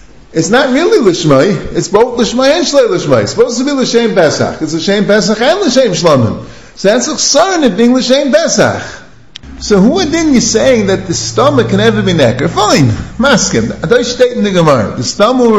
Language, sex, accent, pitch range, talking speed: English, male, American, 185-265 Hz, 185 wpm